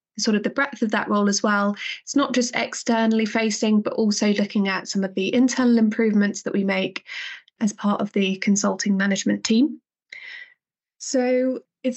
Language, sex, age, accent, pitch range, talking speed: English, female, 20-39, British, 205-250 Hz, 175 wpm